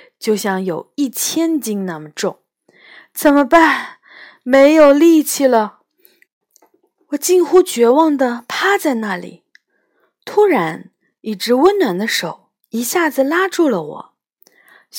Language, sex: Chinese, female